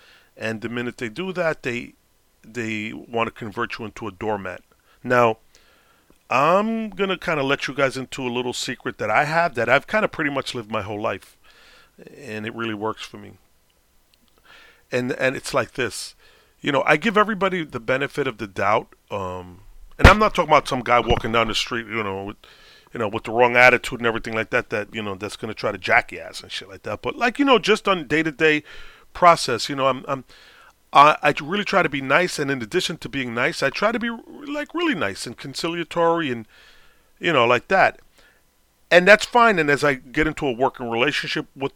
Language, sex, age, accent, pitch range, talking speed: English, male, 40-59, American, 120-175 Hz, 215 wpm